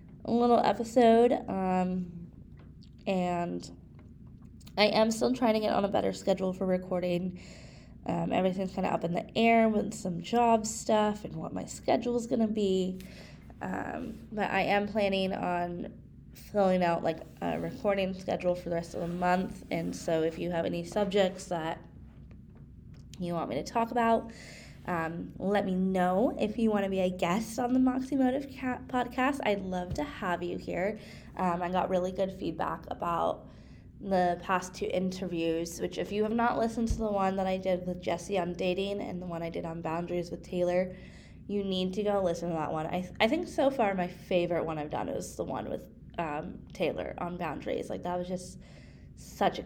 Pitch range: 175-215 Hz